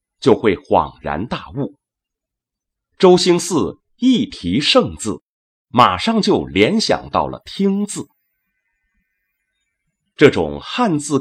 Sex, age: male, 30-49